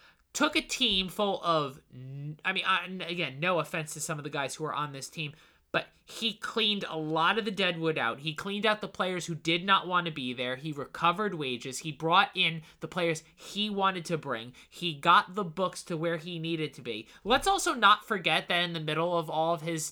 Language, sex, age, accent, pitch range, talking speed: English, male, 20-39, American, 160-200 Hz, 225 wpm